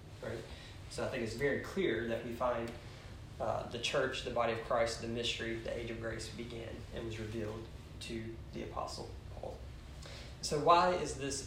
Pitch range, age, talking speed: 110-120 Hz, 20-39, 185 wpm